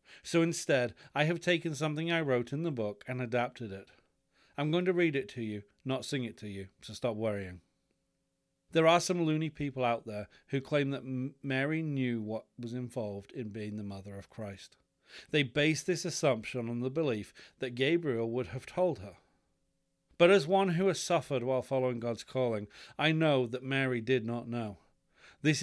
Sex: male